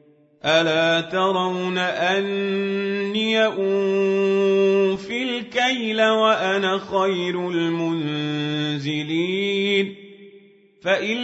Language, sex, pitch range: Arabic, male, 165-200 Hz